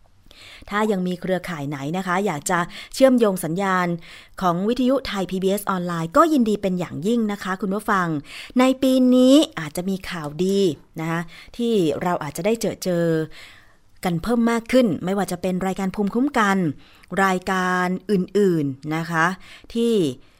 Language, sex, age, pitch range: Thai, female, 20-39, 160-210 Hz